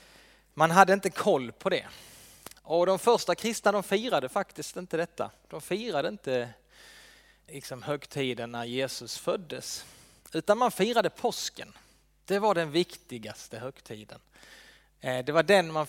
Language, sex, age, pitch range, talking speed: Swedish, male, 30-49, 145-195 Hz, 135 wpm